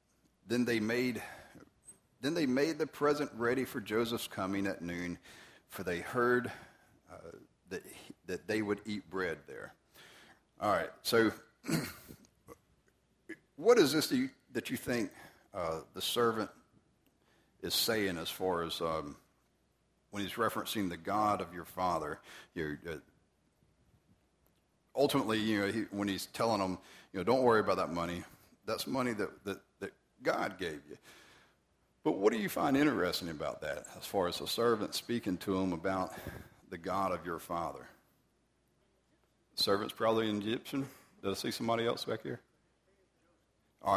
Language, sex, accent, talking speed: English, male, American, 155 wpm